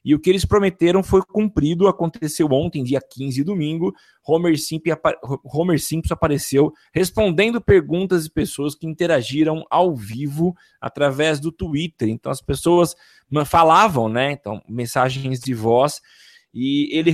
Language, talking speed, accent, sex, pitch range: Portuguese, 145 wpm, Brazilian, male, 140-180 Hz